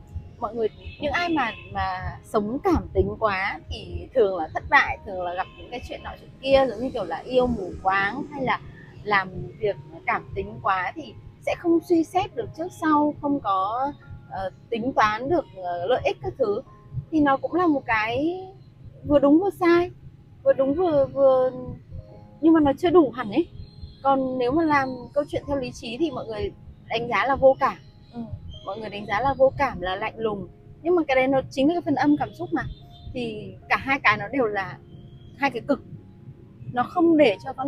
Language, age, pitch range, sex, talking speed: Vietnamese, 20-39, 230-315 Hz, female, 210 wpm